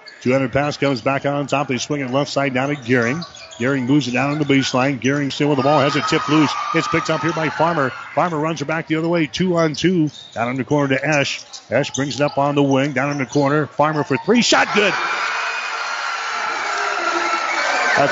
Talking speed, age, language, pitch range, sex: 230 wpm, 50-69, English, 130-155 Hz, male